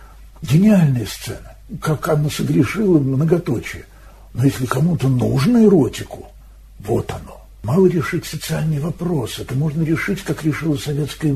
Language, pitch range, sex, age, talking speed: Russian, 110-155 Hz, male, 60-79, 120 wpm